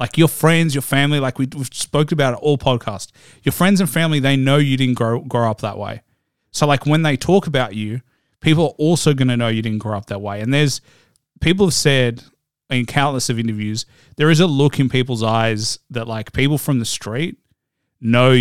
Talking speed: 220 wpm